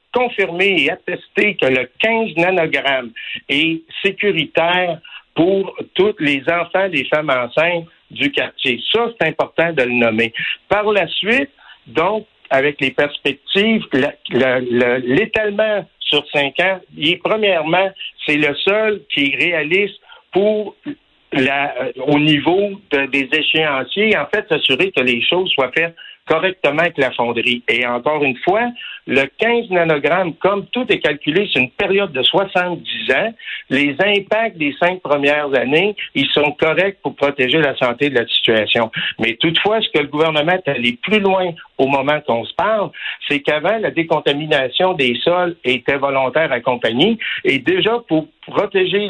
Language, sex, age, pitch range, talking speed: French, male, 60-79, 140-195 Hz, 145 wpm